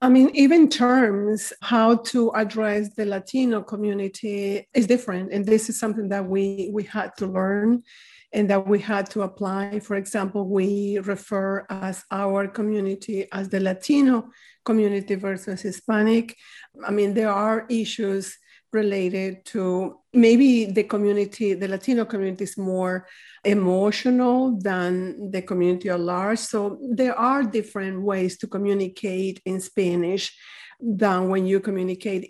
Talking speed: 140 wpm